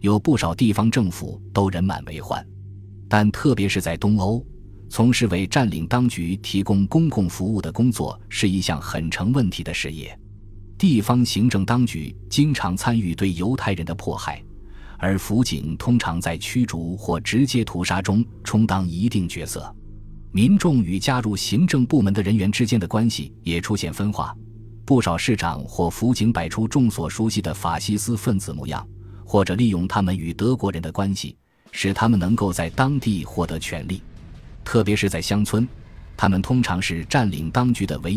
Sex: male